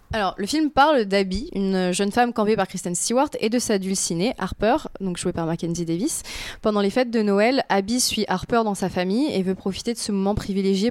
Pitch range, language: 190-235 Hz, French